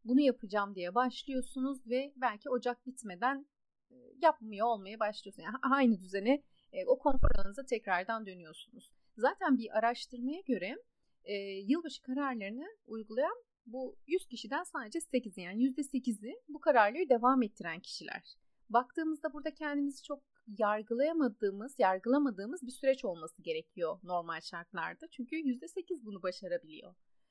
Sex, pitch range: female, 220-285 Hz